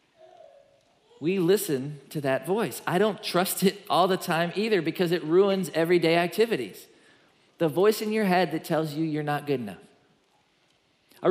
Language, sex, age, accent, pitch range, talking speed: English, male, 40-59, American, 140-185 Hz, 165 wpm